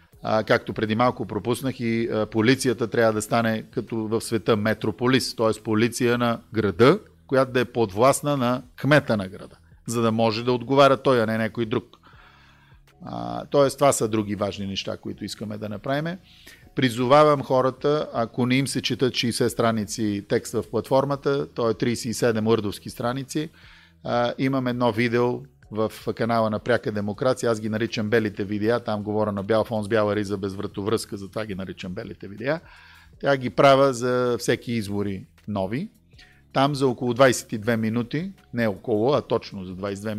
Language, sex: Bulgarian, male